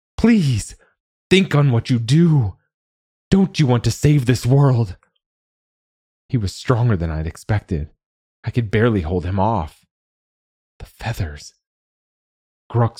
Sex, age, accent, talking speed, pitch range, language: male, 30-49, American, 130 wpm, 85-120 Hz, English